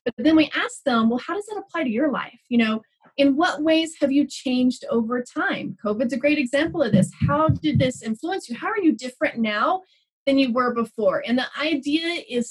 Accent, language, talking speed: American, English, 225 wpm